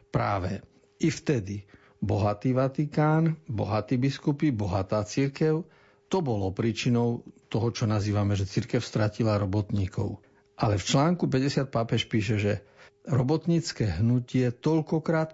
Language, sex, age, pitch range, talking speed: Slovak, male, 50-69, 105-135 Hz, 115 wpm